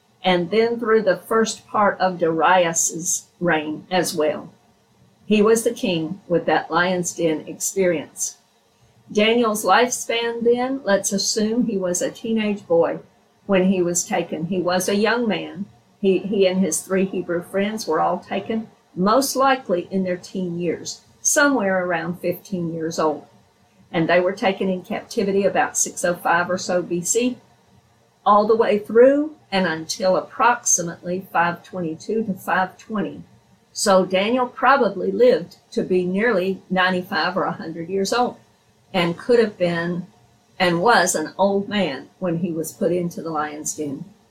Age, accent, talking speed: 50-69, American, 150 wpm